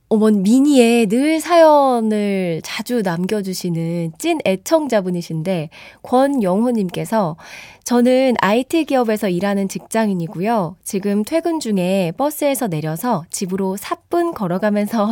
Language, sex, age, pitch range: Korean, female, 20-39, 190-275 Hz